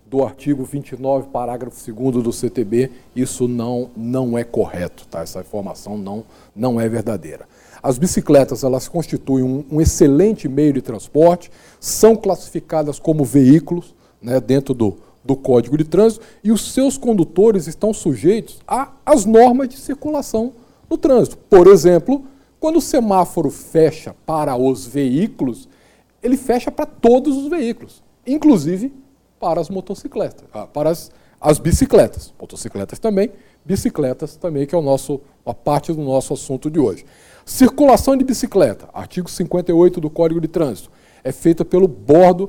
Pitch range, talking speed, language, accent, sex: 135-220 Hz, 145 wpm, Portuguese, Brazilian, male